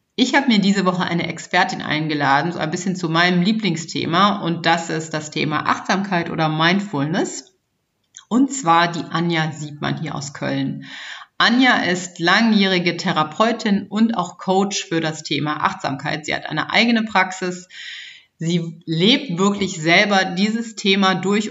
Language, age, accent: German, 30-49, German